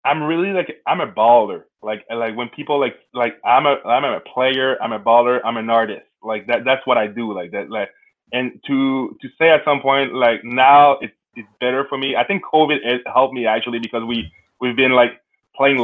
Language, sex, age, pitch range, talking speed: English, male, 20-39, 115-135 Hz, 225 wpm